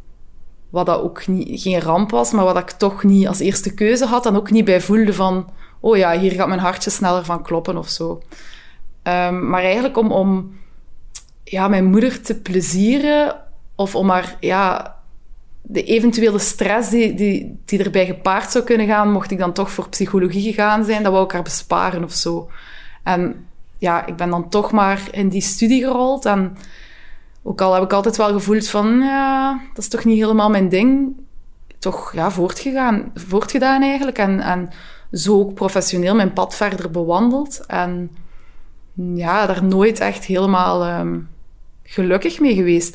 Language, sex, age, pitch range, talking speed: Dutch, female, 20-39, 175-210 Hz, 175 wpm